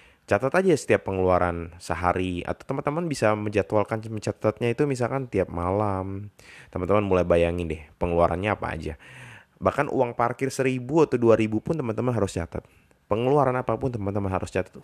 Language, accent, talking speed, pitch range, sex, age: Indonesian, native, 150 wpm, 95-125 Hz, male, 20-39